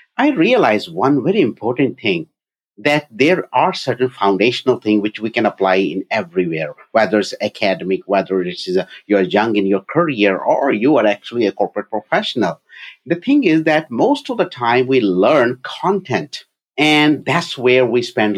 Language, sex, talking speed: English, male, 170 wpm